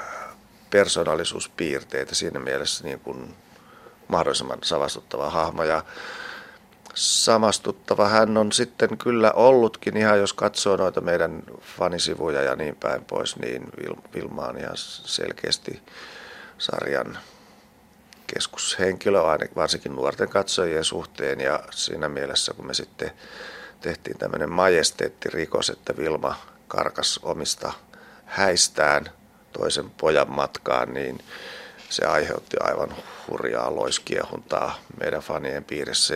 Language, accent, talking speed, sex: Finnish, native, 105 wpm, male